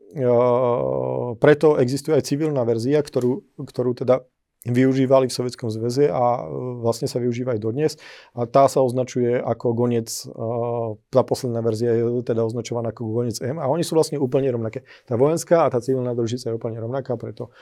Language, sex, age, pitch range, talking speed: Slovak, male, 40-59, 115-135 Hz, 165 wpm